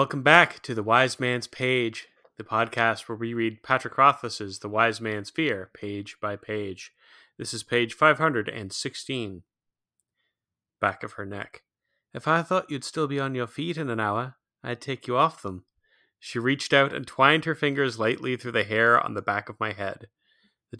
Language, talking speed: English, 195 wpm